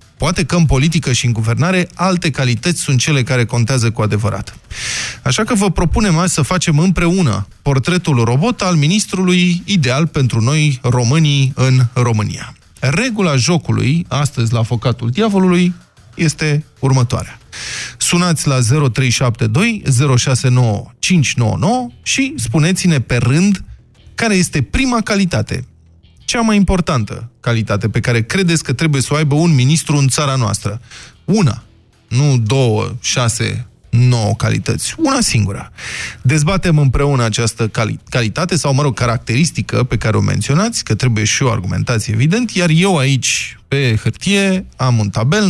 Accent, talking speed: native, 140 wpm